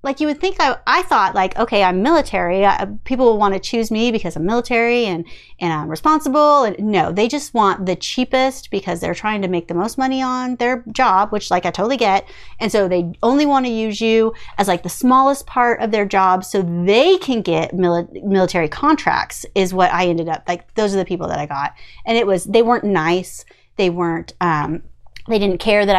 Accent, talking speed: American, 225 wpm